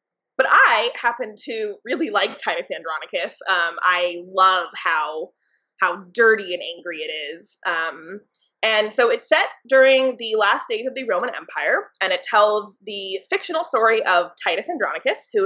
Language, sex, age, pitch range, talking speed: English, female, 20-39, 195-275 Hz, 160 wpm